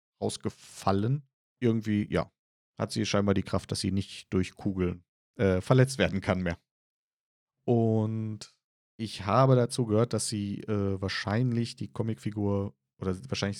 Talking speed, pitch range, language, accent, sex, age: 135 wpm, 95-120 Hz, German, German, male, 40-59